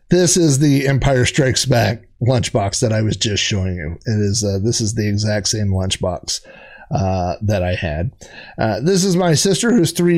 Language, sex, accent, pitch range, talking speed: English, male, American, 110-185 Hz, 195 wpm